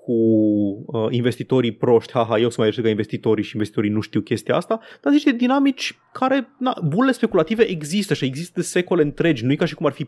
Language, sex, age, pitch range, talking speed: Romanian, male, 20-39, 115-175 Hz, 225 wpm